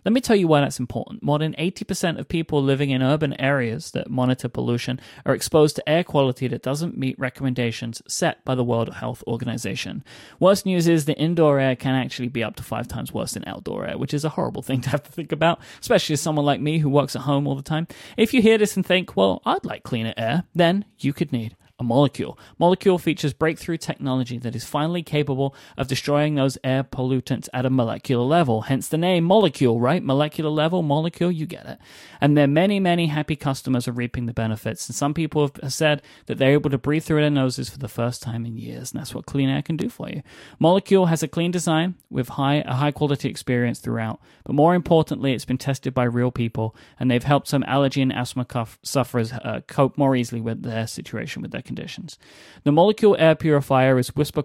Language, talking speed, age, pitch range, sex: English, 220 wpm, 30-49, 125-160 Hz, male